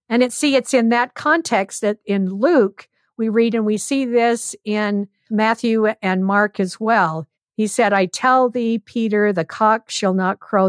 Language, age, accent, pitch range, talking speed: English, 50-69, American, 185-250 Hz, 185 wpm